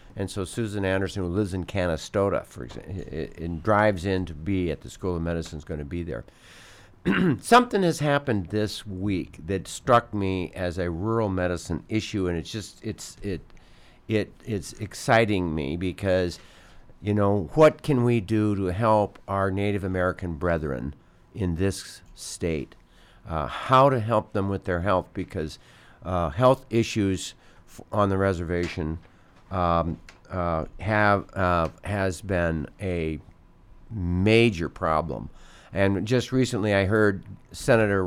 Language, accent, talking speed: English, American, 150 wpm